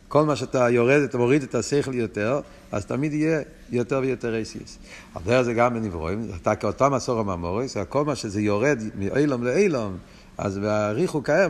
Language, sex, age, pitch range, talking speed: Hebrew, male, 50-69, 135-190 Hz, 170 wpm